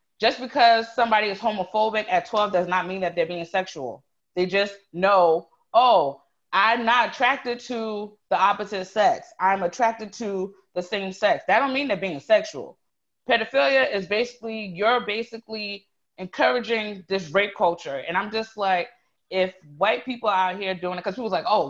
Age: 20-39